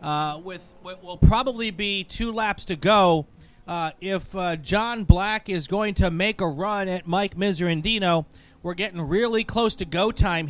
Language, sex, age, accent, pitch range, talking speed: English, male, 40-59, American, 170-215 Hz, 175 wpm